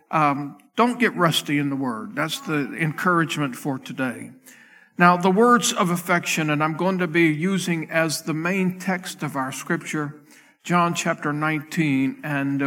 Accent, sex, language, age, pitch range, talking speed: American, male, English, 50-69, 150-185 Hz, 160 wpm